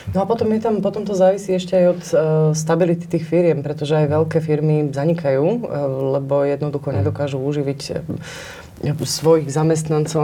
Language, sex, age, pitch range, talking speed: Slovak, female, 20-39, 135-155 Hz, 170 wpm